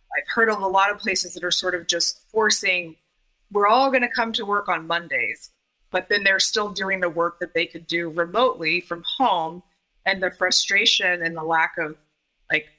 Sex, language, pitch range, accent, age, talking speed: female, English, 175-215 Hz, American, 30-49, 205 wpm